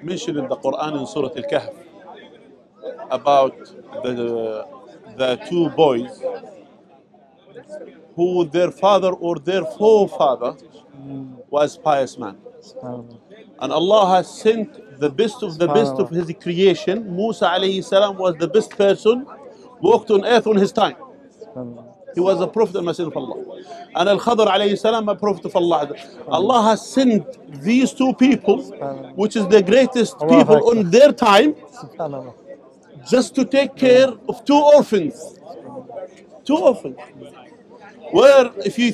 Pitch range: 175-240 Hz